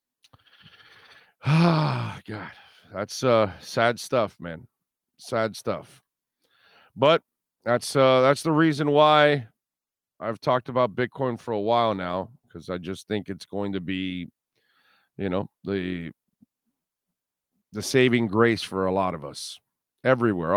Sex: male